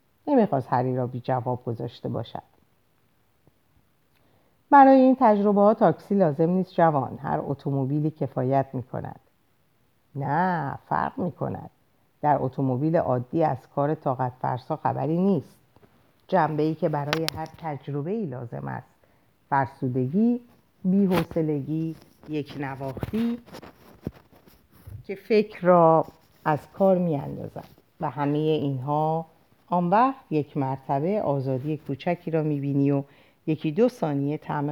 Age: 50-69